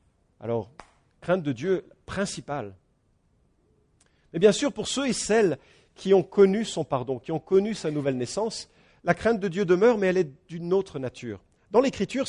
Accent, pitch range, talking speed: French, 120-190 Hz, 175 wpm